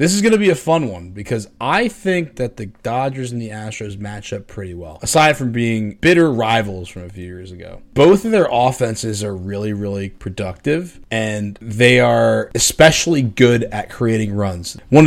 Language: English